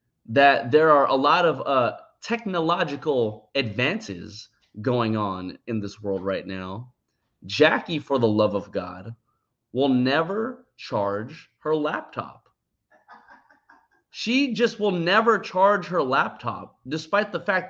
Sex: male